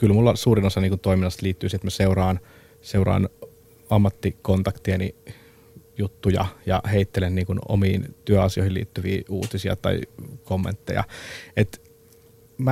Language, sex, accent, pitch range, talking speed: Finnish, male, native, 95-115 Hz, 120 wpm